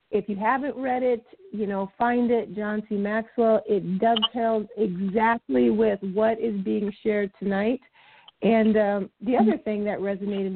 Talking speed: 160 wpm